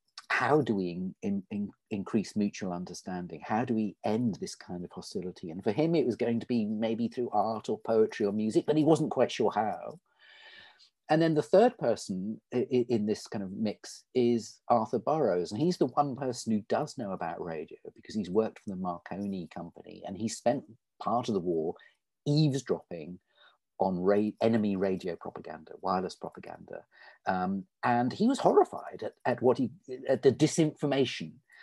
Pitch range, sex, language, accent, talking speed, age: 110-170 Hz, male, English, British, 175 wpm, 40-59